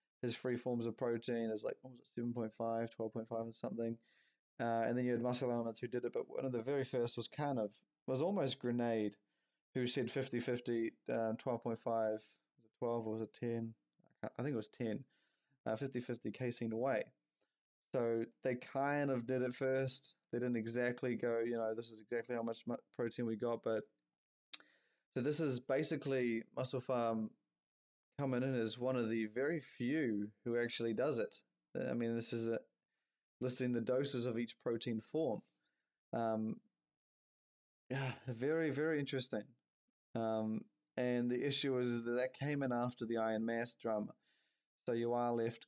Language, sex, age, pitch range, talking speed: English, male, 20-39, 115-125 Hz, 180 wpm